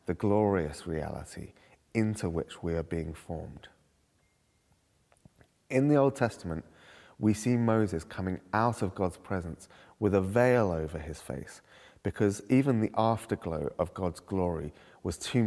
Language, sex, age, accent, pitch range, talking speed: English, male, 30-49, British, 90-110 Hz, 140 wpm